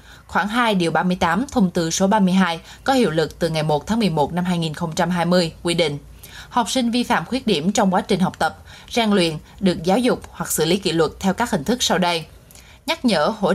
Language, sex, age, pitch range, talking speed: Vietnamese, female, 20-39, 175-225 Hz, 215 wpm